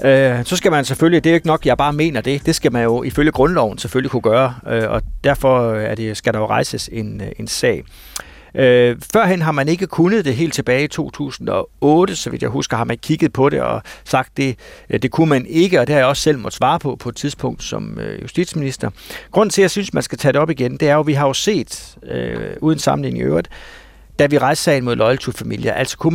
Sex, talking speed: male, 240 wpm